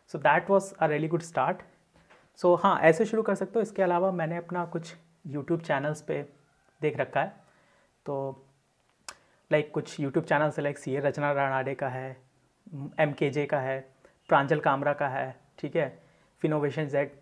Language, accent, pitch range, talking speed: Hindi, native, 140-180 Hz, 170 wpm